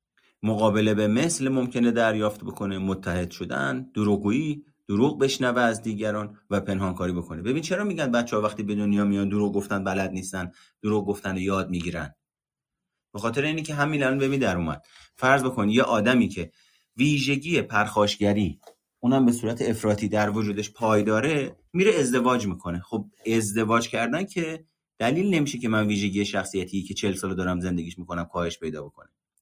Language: Persian